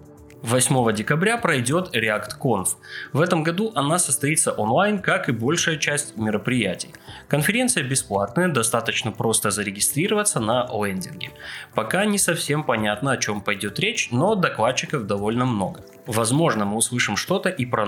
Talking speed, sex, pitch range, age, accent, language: 135 wpm, male, 105-165 Hz, 20-39, native, Russian